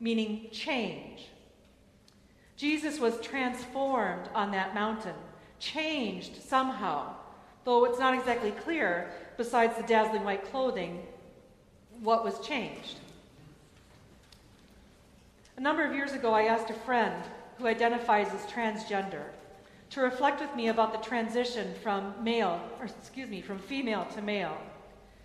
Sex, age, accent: female, 40-59, American